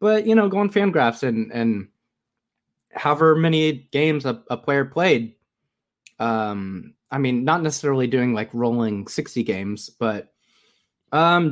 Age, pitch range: 20-39, 120-165 Hz